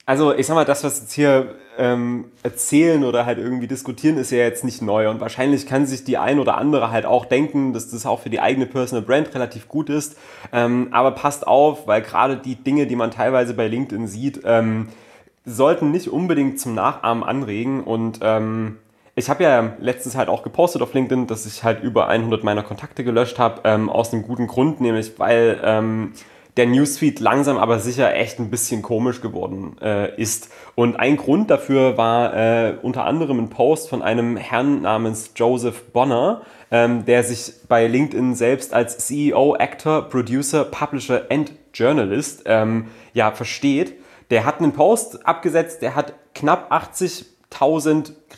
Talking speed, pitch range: 175 wpm, 115-140 Hz